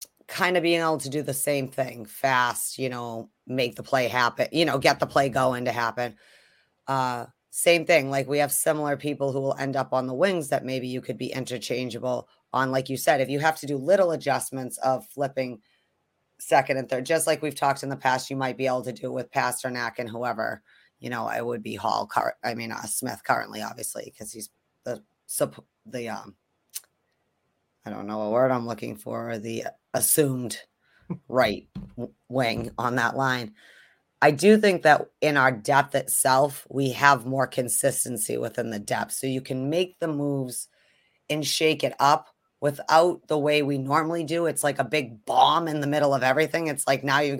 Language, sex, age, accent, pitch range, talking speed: English, female, 30-49, American, 125-150 Hz, 200 wpm